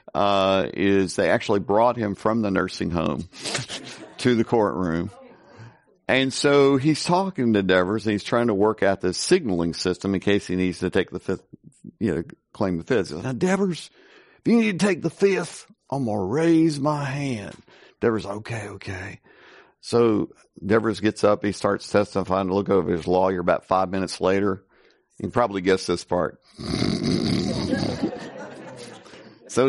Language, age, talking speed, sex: English, 50-69, 170 wpm, male